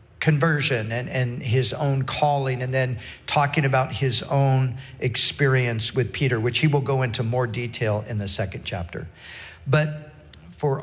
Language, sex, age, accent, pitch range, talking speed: English, male, 50-69, American, 110-145 Hz, 155 wpm